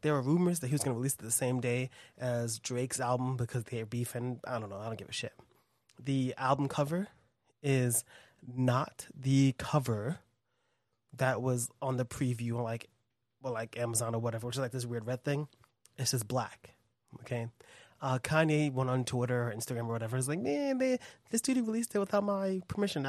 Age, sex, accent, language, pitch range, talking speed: 20-39, male, American, English, 120-140 Hz, 200 wpm